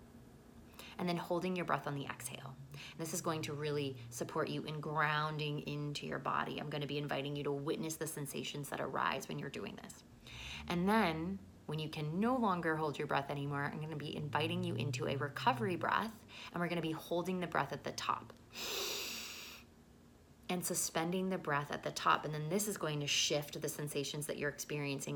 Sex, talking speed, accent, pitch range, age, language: female, 210 wpm, American, 140-165 Hz, 20-39, English